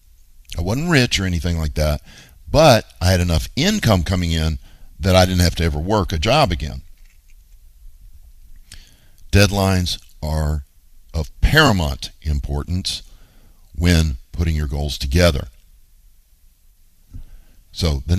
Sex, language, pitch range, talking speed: male, English, 80-95 Hz, 120 wpm